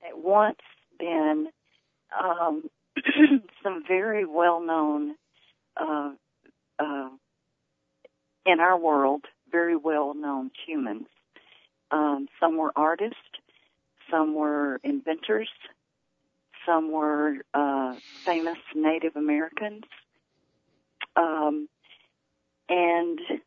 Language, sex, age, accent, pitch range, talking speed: English, female, 40-59, American, 150-210 Hz, 80 wpm